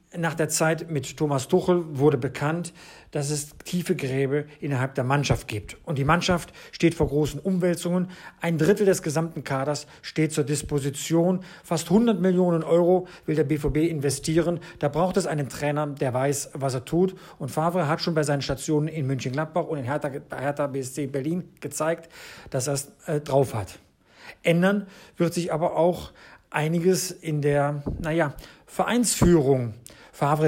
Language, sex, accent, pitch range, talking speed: German, male, German, 145-180 Hz, 160 wpm